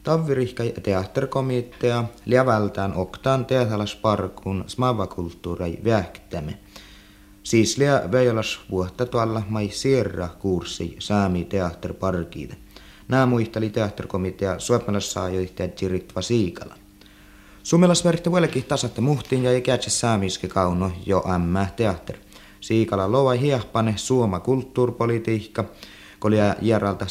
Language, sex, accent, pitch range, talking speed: Finnish, male, native, 95-120 Hz, 75 wpm